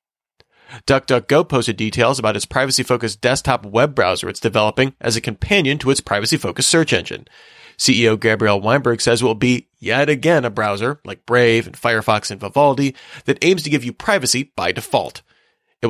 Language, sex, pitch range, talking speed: English, male, 110-140 Hz, 170 wpm